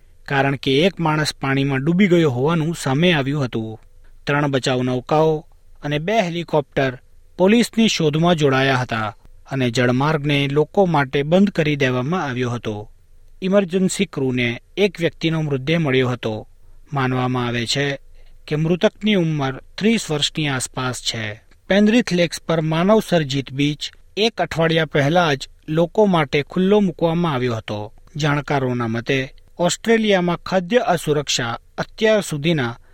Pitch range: 125-170 Hz